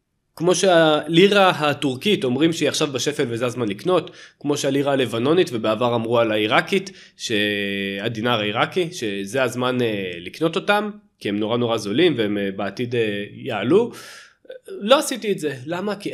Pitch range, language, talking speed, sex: 115-170 Hz, Hebrew, 140 wpm, male